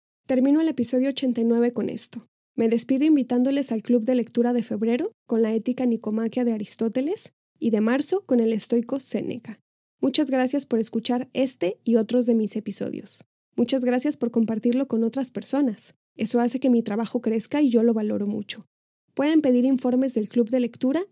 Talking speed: 180 wpm